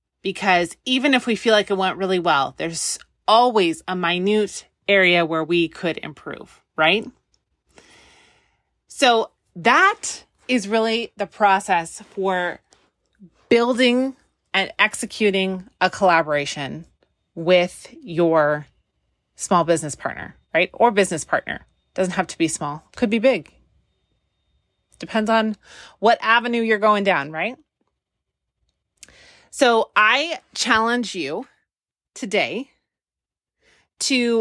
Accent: American